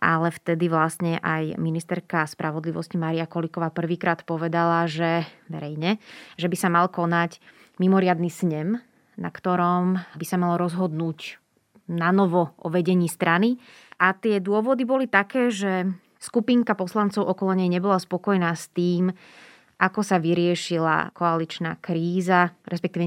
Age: 20-39